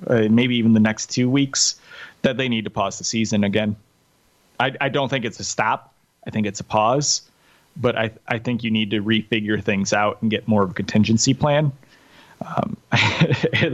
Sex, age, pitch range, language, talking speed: male, 30-49, 115-135 Hz, English, 200 wpm